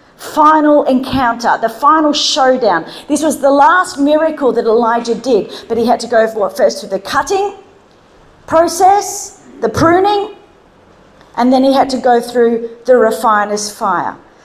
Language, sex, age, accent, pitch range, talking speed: English, female, 40-59, Australian, 250-360 Hz, 155 wpm